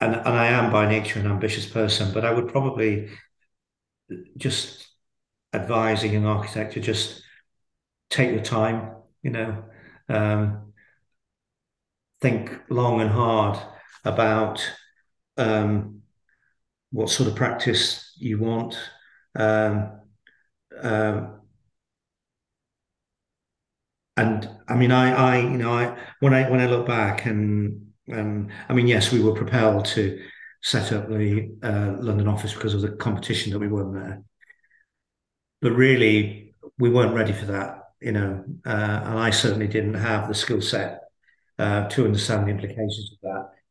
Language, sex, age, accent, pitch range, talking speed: English, male, 50-69, British, 105-120 Hz, 140 wpm